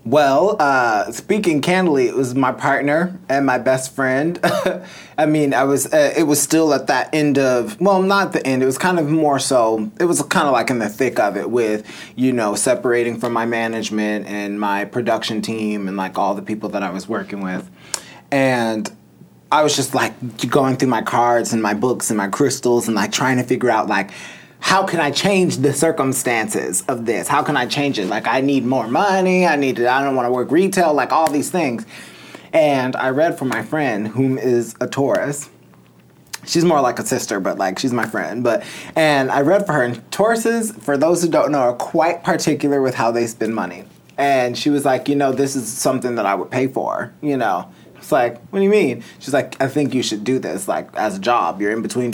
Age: 20-39